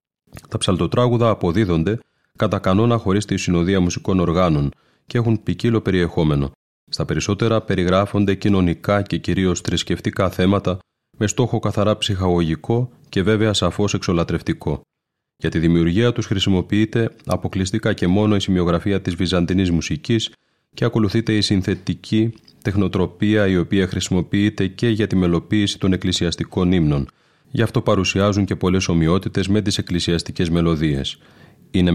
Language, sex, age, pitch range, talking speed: Greek, male, 30-49, 90-105 Hz, 130 wpm